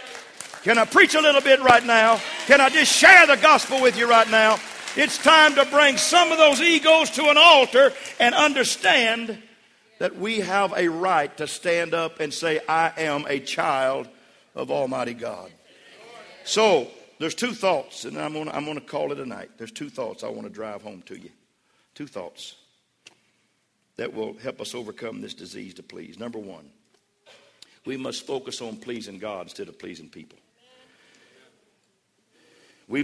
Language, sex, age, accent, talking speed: English, male, 50-69, American, 175 wpm